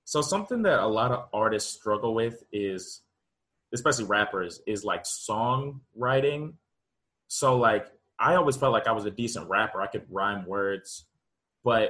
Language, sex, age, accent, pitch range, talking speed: English, male, 20-39, American, 100-125 Hz, 155 wpm